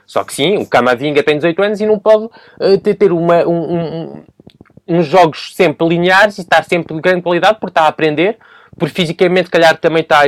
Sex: male